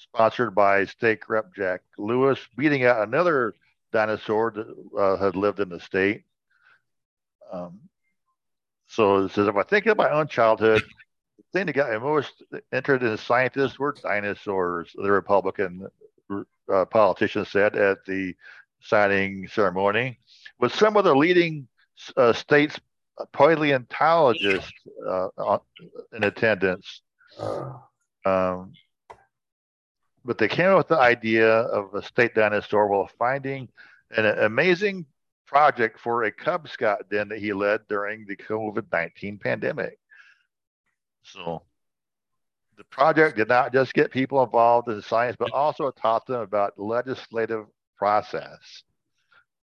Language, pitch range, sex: English, 105-140 Hz, male